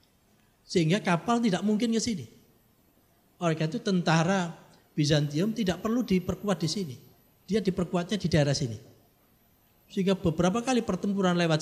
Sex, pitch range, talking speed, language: male, 130-195 Hz, 130 wpm, Malay